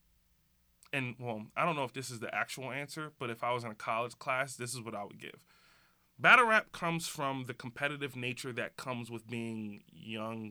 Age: 20-39